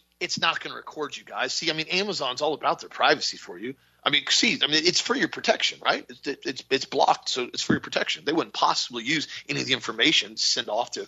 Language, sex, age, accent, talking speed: English, male, 40-59, American, 260 wpm